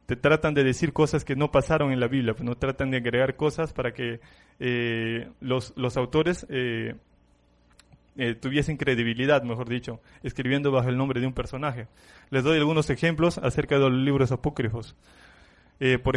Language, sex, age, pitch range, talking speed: Spanish, male, 20-39, 125-145 Hz, 170 wpm